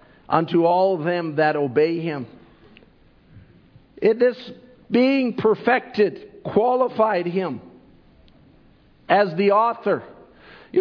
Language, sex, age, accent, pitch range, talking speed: English, male, 50-69, American, 195-240 Hz, 85 wpm